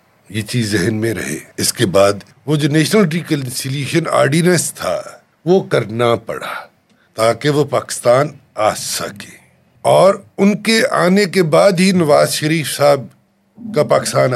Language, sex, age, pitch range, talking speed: Urdu, male, 60-79, 115-165 Hz, 140 wpm